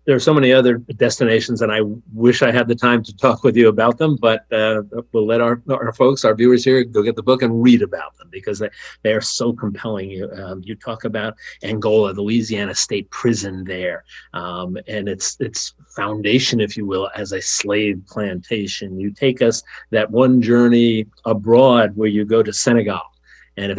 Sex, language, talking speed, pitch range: male, English, 200 wpm, 105-130 Hz